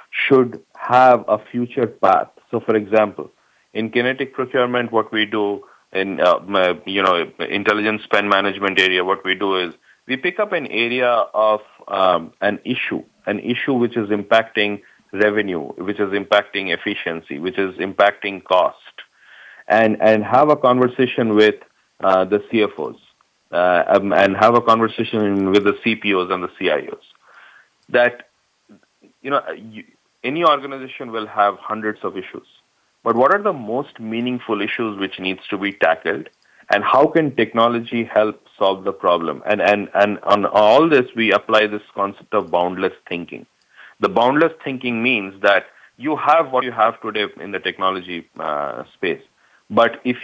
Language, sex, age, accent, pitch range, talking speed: English, male, 50-69, Indian, 100-125 Hz, 155 wpm